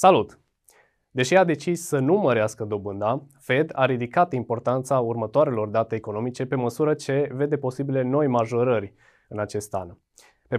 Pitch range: 115-140 Hz